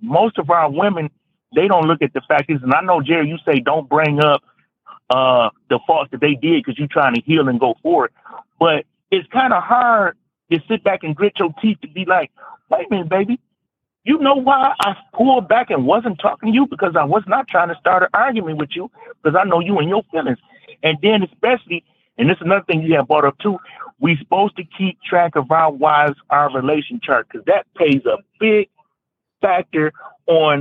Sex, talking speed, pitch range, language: male, 225 wpm, 145-220 Hz, English